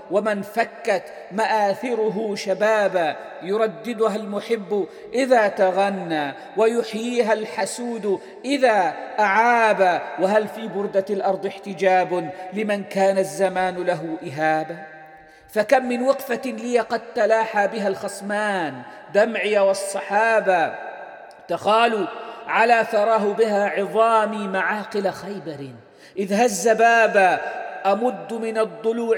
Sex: male